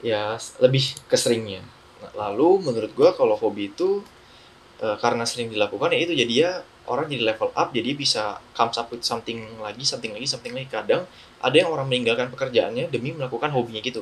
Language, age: Indonesian, 10-29